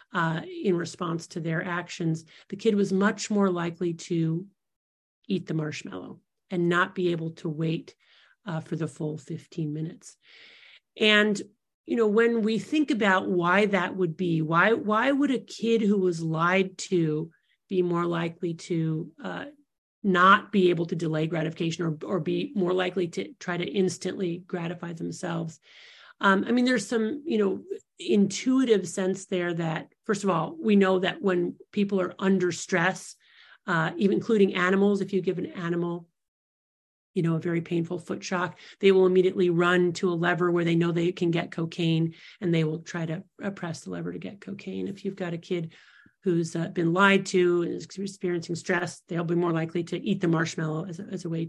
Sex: male